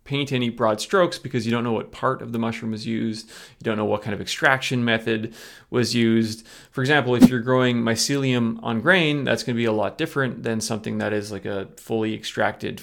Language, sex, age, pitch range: English, male, 30-49, 110-130 Hz